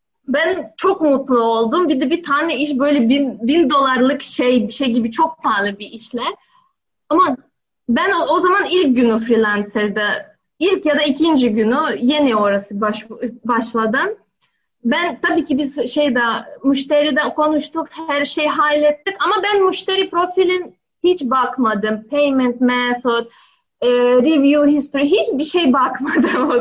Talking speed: 135 wpm